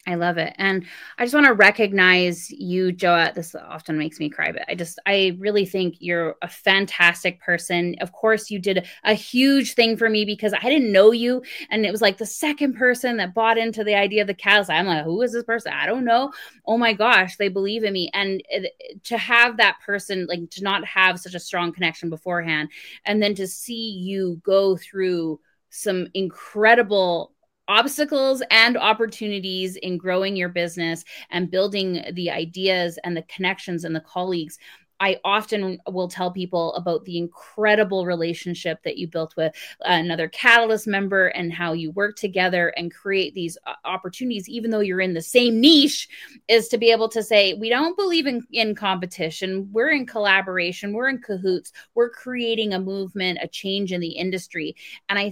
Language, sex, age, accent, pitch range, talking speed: English, female, 20-39, American, 175-225 Hz, 190 wpm